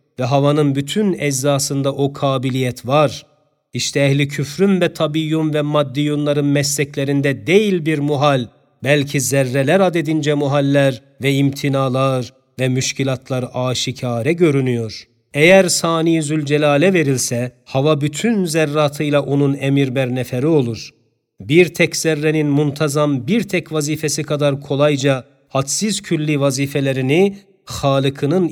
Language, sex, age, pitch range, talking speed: Turkish, male, 40-59, 135-155 Hz, 110 wpm